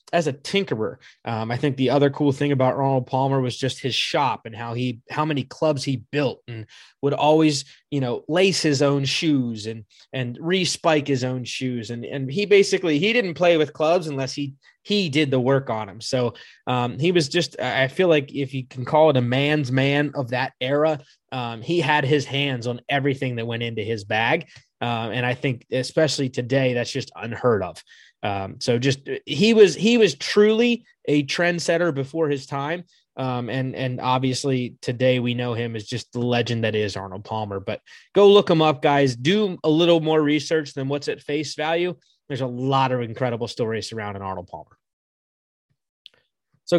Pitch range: 125-155 Hz